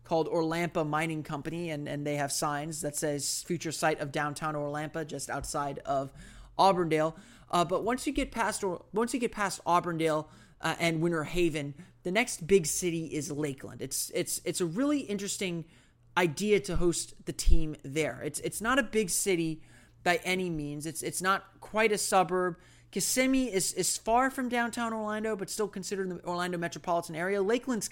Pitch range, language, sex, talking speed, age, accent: 155-195 Hz, English, male, 180 wpm, 30-49, American